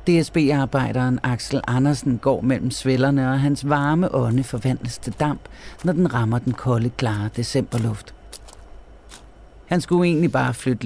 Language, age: Danish, 40-59